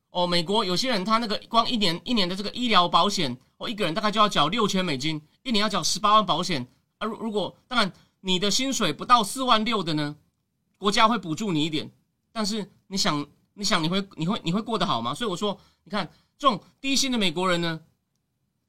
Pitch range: 175-230 Hz